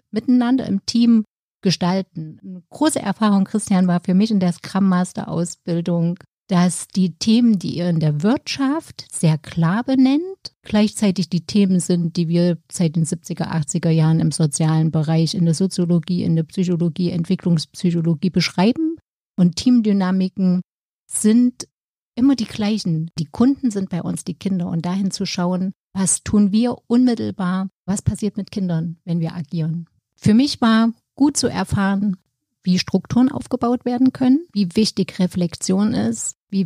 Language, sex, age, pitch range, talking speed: German, female, 50-69, 175-220 Hz, 150 wpm